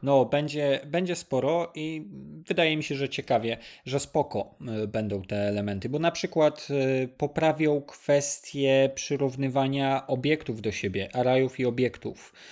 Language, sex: Polish, male